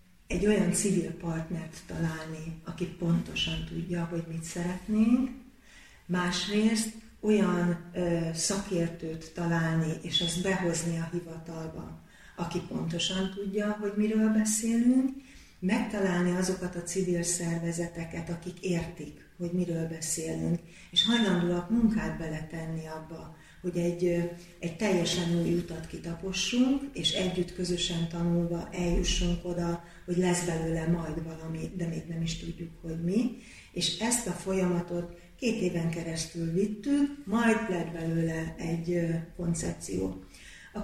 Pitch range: 170-190 Hz